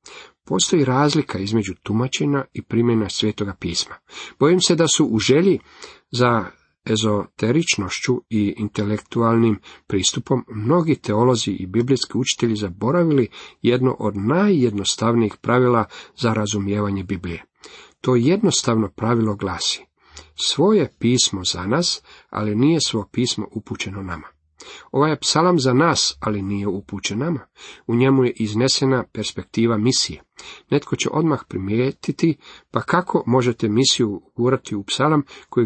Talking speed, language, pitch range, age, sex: 125 wpm, Croatian, 105-140 Hz, 40-59, male